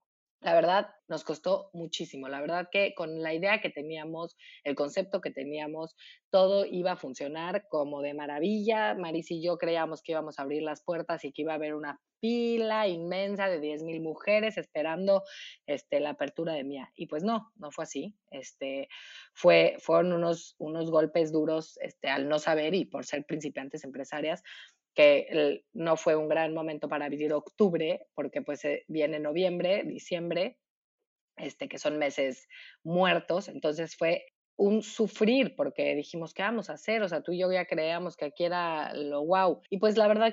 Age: 30-49